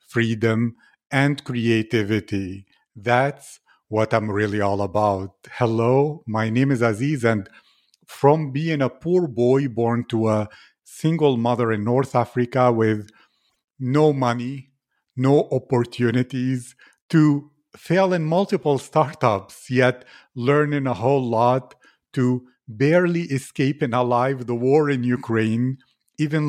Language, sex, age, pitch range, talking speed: English, male, 50-69, 115-140 Hz, 120 wpm